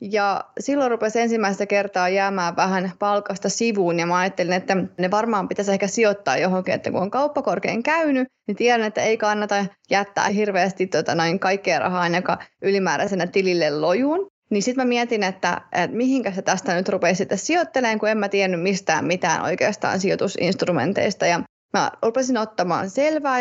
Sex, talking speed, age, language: female, 165 wpm, 30-49, Finnish